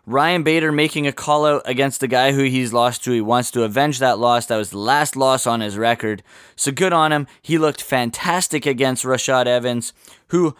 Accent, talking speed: American, 215 wpm